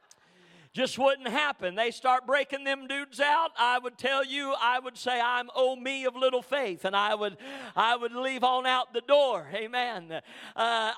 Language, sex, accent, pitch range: English, male, American, 245-285 Hz